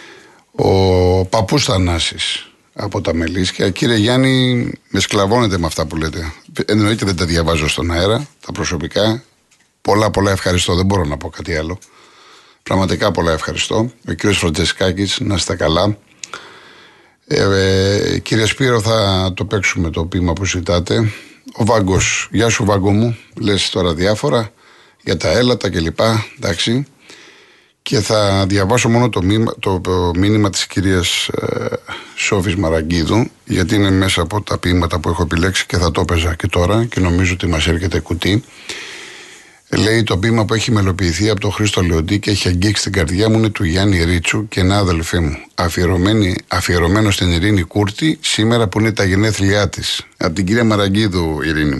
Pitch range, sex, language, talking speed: 90-110 Hz, male, Greek, 160 wpm